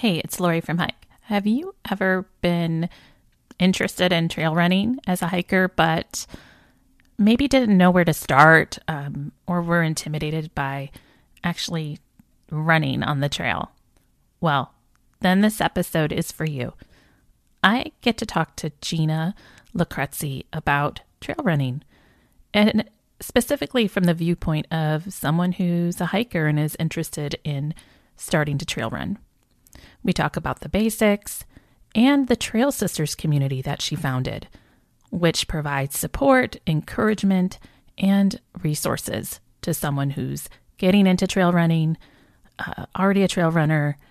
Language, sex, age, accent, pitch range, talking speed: English, female, 30-49, American, 150-195 Hz, 135 wpm